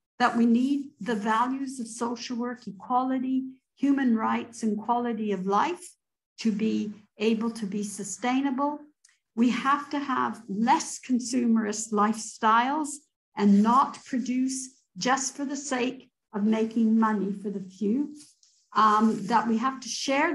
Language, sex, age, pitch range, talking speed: Turkish, female, 60-79, 210-255 Hz, 140 wpm